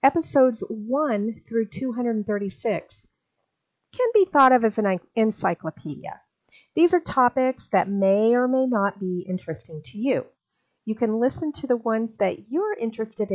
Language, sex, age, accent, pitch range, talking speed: English, female, 40-59, American, 195-265 Hz, 145 wpm